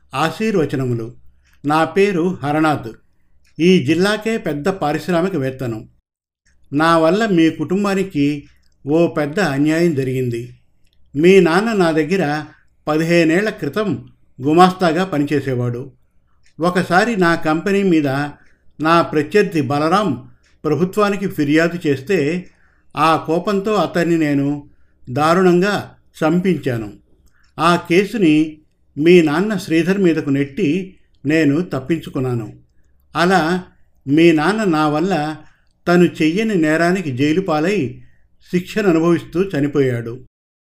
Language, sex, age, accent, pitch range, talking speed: Telugu, male, 50-69, native, 135-175 Hz, 90 wpm